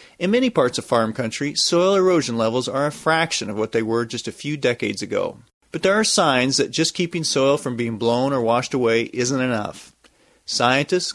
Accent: American